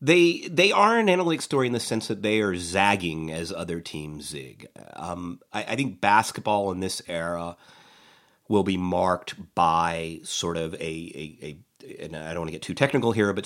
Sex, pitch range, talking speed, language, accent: male, 85-115 Hz, 185 wpm, English, American